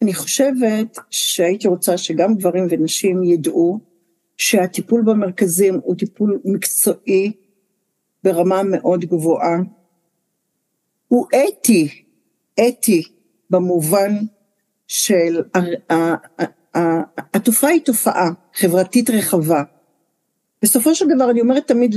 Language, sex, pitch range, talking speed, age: Hebrew, female, 180-255 Hz, 95 wpm, 50-69